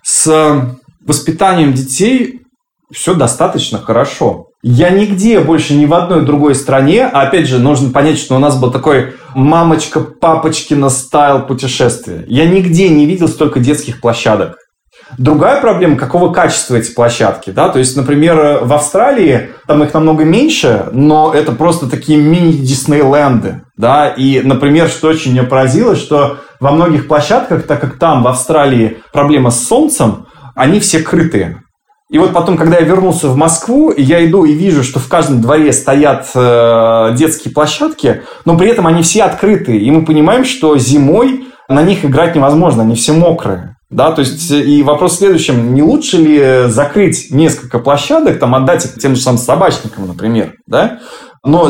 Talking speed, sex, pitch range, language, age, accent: 160 wpm, male, 135-165 Hz, Russian, 20-39, native